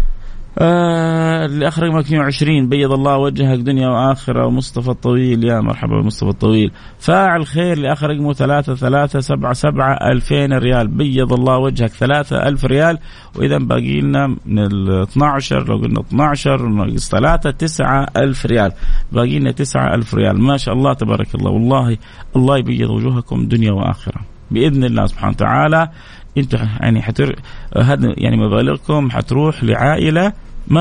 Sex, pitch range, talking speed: male, 110-140 Hz, 130 wpm